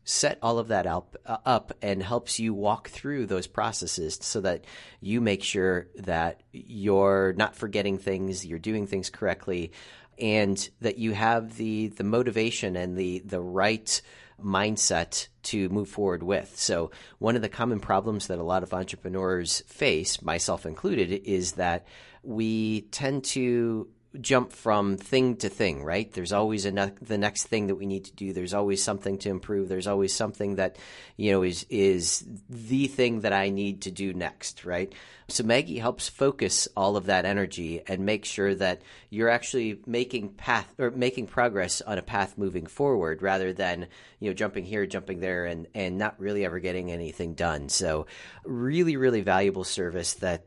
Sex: male